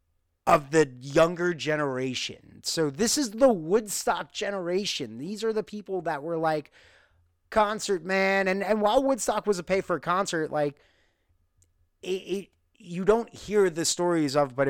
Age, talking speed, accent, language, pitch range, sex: 30-49, 160 wpm, American, English, 120-175 Hz, male